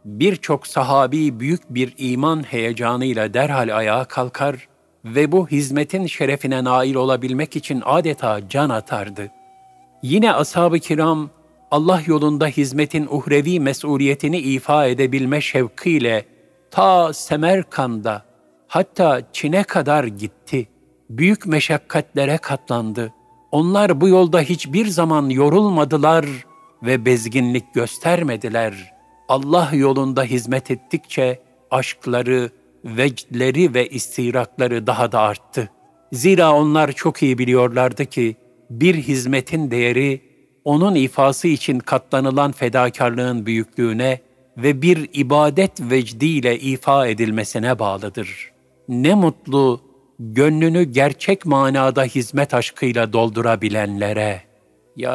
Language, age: Turkish, 50-69